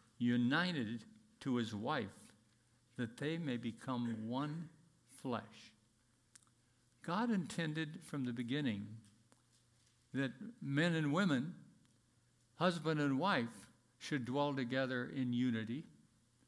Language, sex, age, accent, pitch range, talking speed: English, male, 60-79, American, 120-165 Hz, 100 wpm